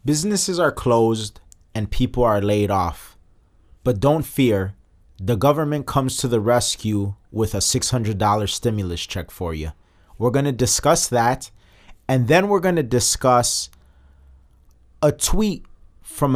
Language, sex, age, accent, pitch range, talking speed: English, male, 30-49, American, 105-140 Hz, 145 wpm